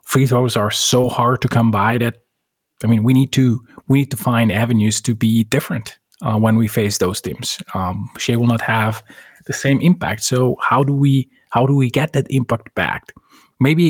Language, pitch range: English, 110-135 Hz